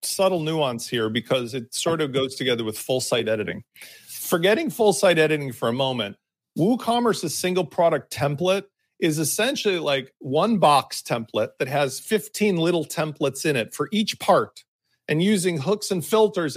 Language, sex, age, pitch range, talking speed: English, male, 40-59, 145-205 Hz, 165 wpm